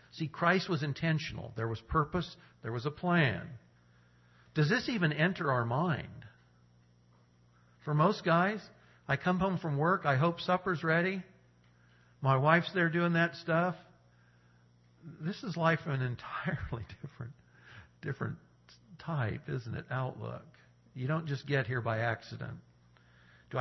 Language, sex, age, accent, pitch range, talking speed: English, male, 50-69, American, 110-160 Hz, 140 wpm